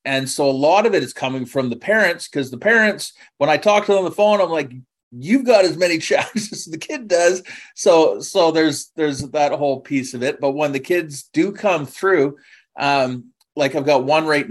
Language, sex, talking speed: English, male, 230 wpm